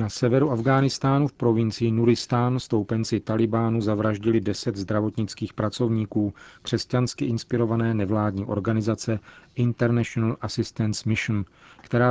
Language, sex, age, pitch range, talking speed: Czech, male, 40-59, 105-120 Hz, 100 wpm